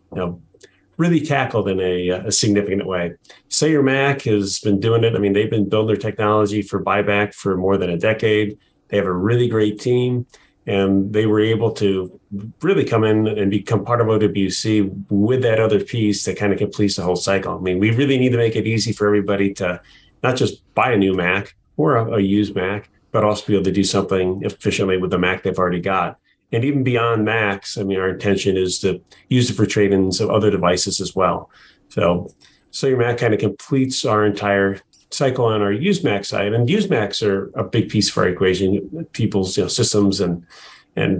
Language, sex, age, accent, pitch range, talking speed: English, male, 30-49, American, 95-110 Hz, 210 wpm